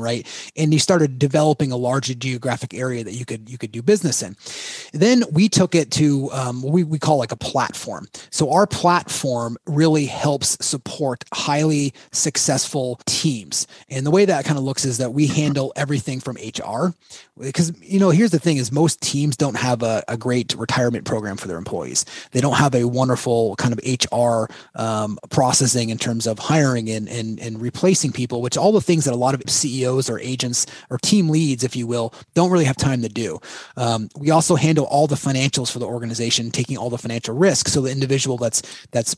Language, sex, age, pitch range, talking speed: English, male, 30-49, 120-150 Hz, 205 wpm